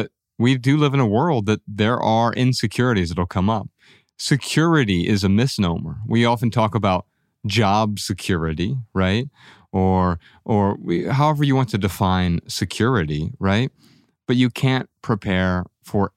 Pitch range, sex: 95-125 Hz, male